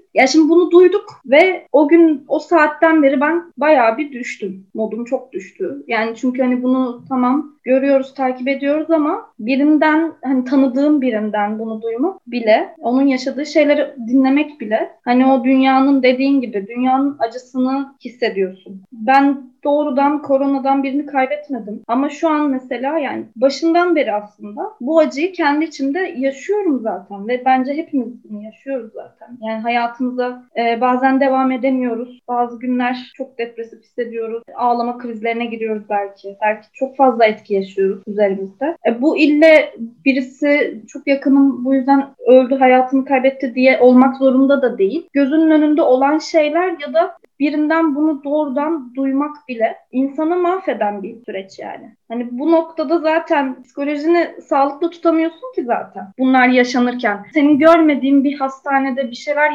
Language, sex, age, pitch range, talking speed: Turkish, female, 30-49, 245-305 Hz, 140 wpm